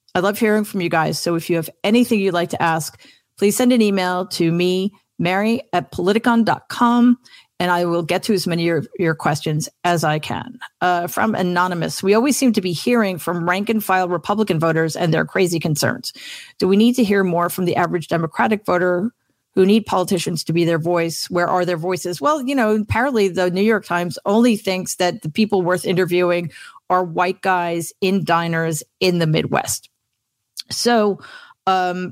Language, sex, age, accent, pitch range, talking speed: English, female, 40-59, American, 165-195 Hz, 190 wpm